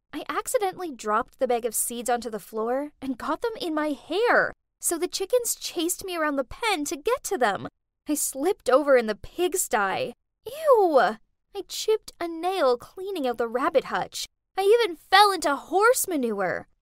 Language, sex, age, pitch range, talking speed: English, female, 10-29, 250-380 Hz, 180 wpm